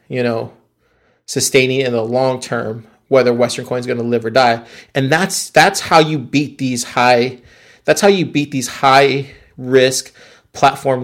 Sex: male